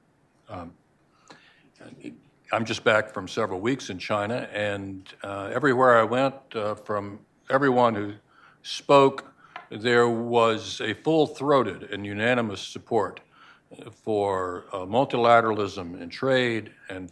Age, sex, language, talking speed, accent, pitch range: 60-79, male, English, 110 wpm, American, 100-125 Hz